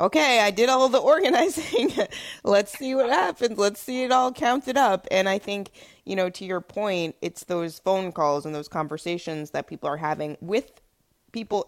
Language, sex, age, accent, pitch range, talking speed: English, female, 20-39, American, 155-205 Hz, 190 wpm